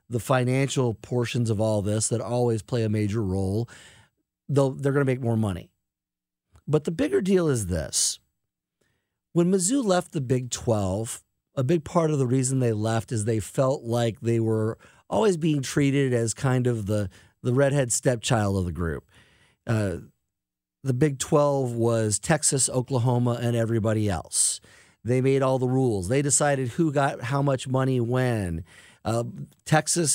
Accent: American